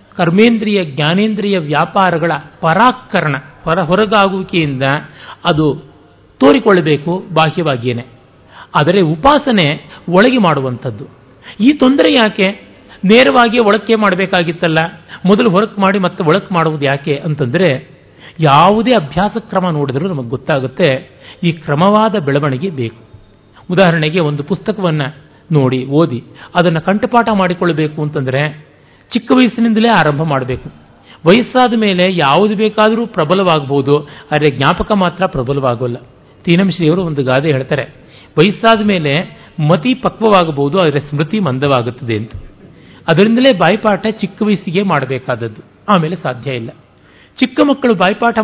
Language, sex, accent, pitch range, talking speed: Kannada, male, native, 145-205 Hz, 105 wpm